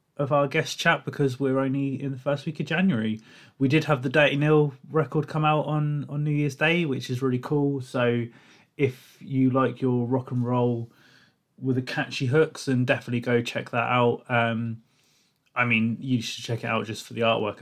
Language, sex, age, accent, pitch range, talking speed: English, male, 20-39, British, 125-150 Hz, 210 wpm